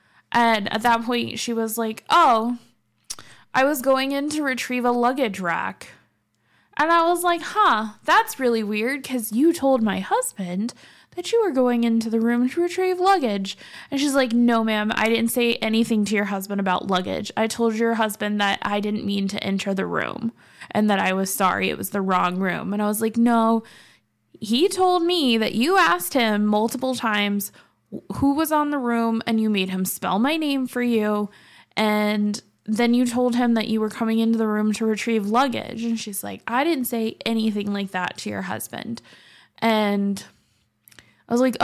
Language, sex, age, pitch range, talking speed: English, female, 20-39, 210-250 Hz, 195 wpm